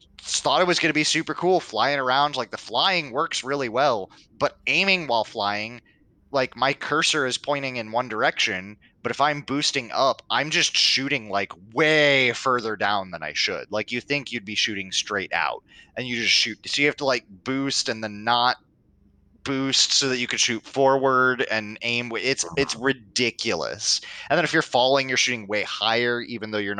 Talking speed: 195 wpm